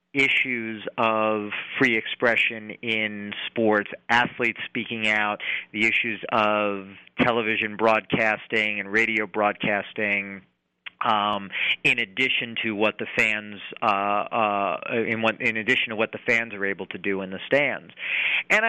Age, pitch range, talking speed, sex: 40-59, 110-130 Hz, 135 wpm, male